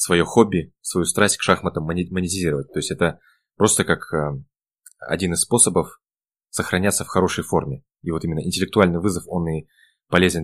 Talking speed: 155 wpm